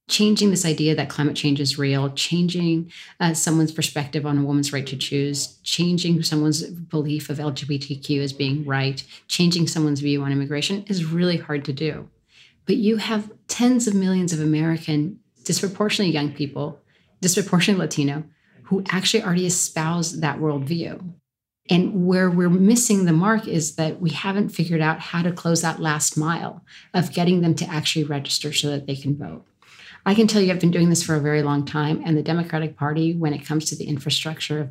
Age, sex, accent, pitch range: 30-49, female, American, 150-180 Hz